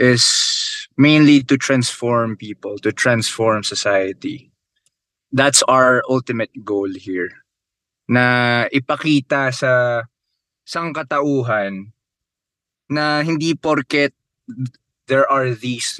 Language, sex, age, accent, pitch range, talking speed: Filipino, male, 20-39, native, 115-145 Hz, 85 wpm